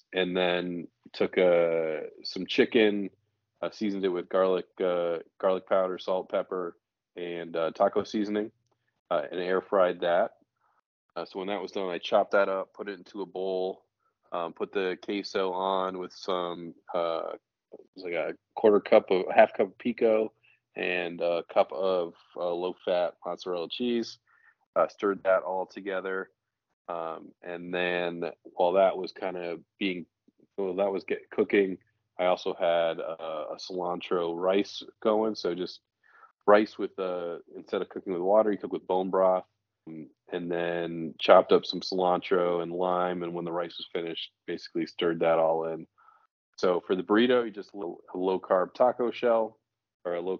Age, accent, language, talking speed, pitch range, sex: 20-39, American, English, 170 wpm, 85-105 Hz, male